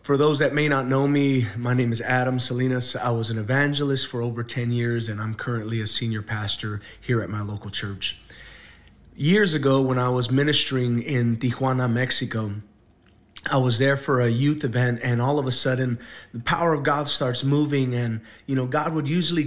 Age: 30-49